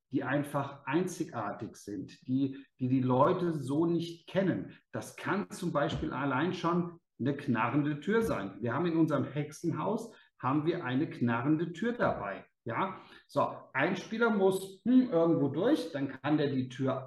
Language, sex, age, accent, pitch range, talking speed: German, male, 50-69, German, 140-185 Hz, 160 wpm